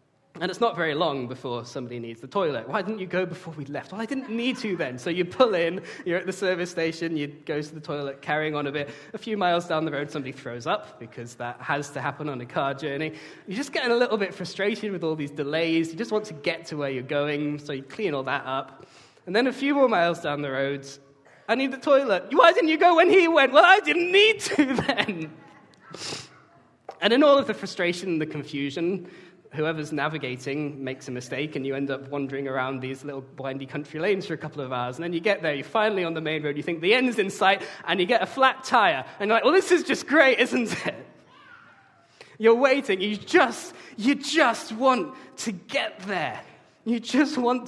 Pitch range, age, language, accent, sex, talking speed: 140-215 Hz, 20-39, English, British, male, 235 wpm